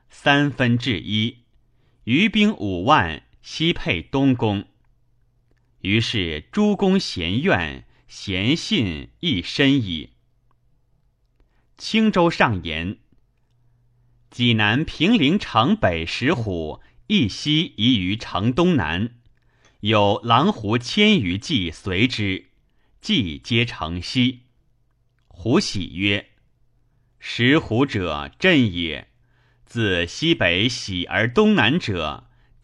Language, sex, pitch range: Chinese, male, 100-130 Hz